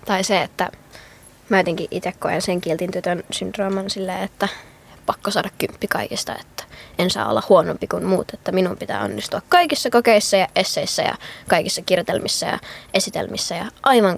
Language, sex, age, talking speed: Finnish, female, 20-39, 160 wpm